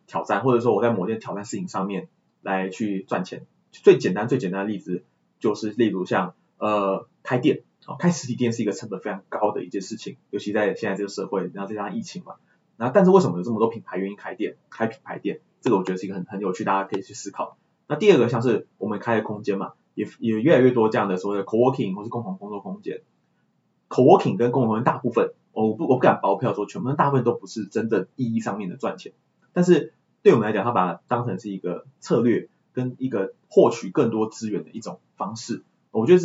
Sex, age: male, 20-39